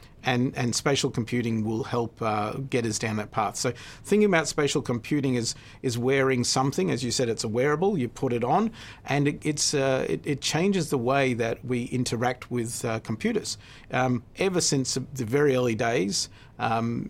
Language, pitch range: English, 110-135 Hz